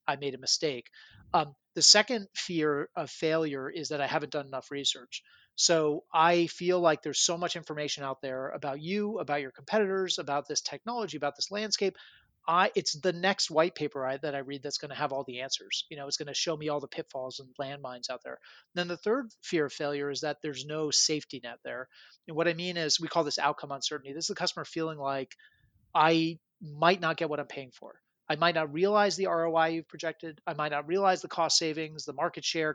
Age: 30-49